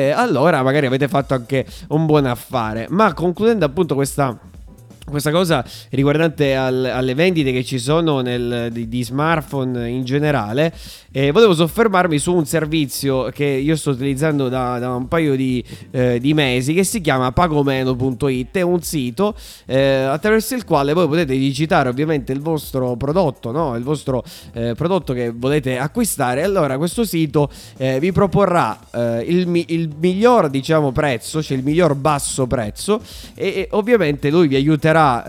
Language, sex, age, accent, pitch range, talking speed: Italian, male, 20-39, native, 130-165 Hz, 155 wpm